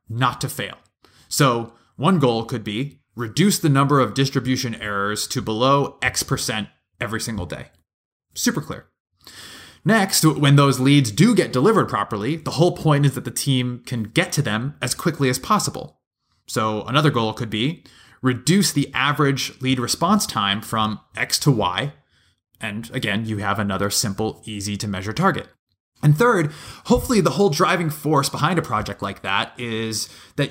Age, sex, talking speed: 20-39, male, 165 wpm